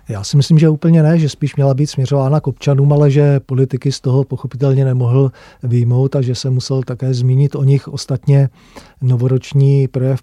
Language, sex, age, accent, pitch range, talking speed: Czech, male, 40-59, native, 125-135 Hz, 190 wpm